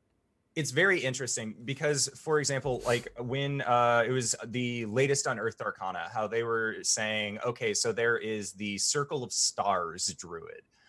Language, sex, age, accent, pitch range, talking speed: English, male, 30-49, American, 105-145 Hz, 155 wpm